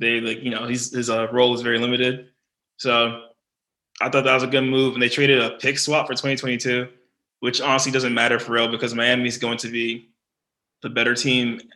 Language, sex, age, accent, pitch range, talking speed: English, male, 20-39, American, 120-130 Hz, 205 wpm